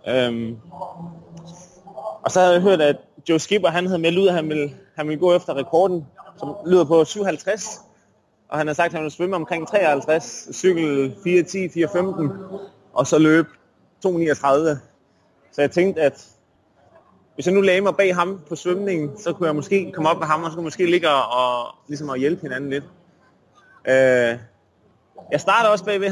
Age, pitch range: 30-49, 135-185 Hz